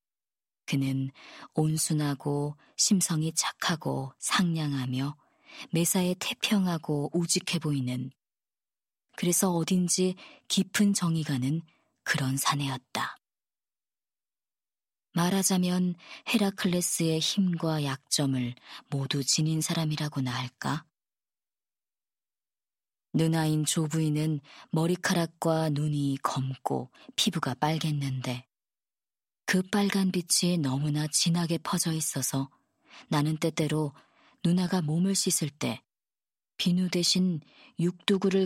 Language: Korean